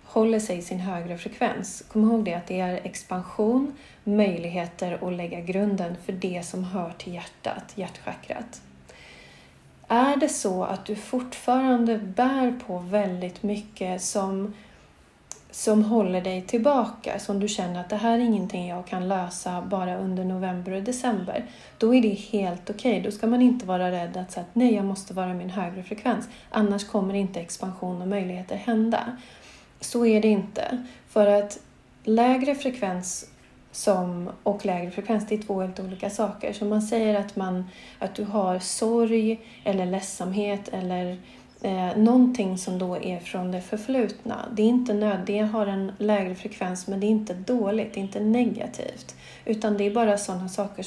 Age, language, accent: 40-59, Swedish, native